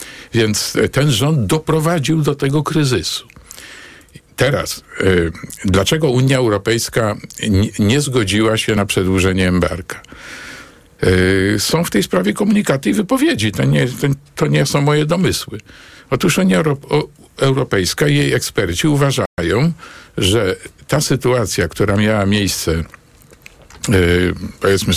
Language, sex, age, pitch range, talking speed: Polish, male, 50-69, 100-130 Hz, 110 wpm